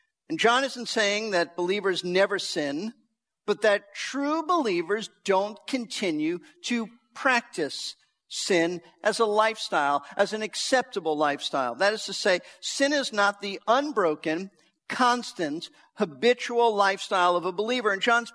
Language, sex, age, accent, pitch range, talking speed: English, male, 50-69, American, 180-245 Hz, 135 wpm